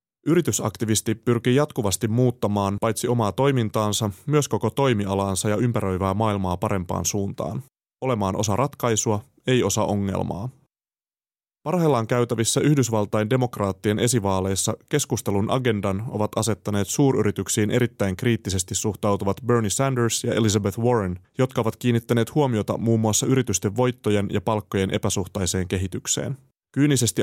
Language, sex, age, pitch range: Finnish, male, 30-49, 100-125 Hz